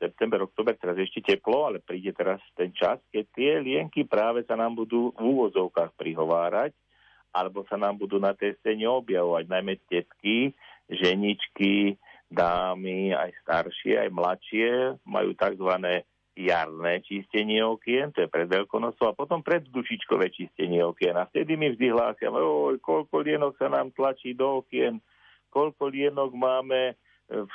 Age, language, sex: 50-69, Slovak, male